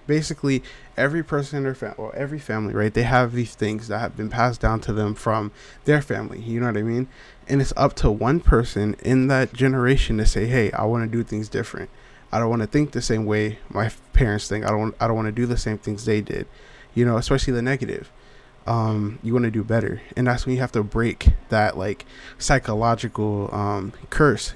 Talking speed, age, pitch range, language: 225 wpm, 20-39, 110-125 Hz, English